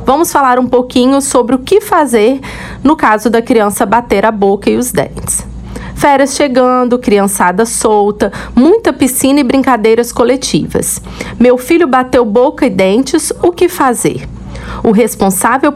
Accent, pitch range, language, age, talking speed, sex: Brazilian, 195-260 Hz, Portuguese, 40-59, 145 wpm, female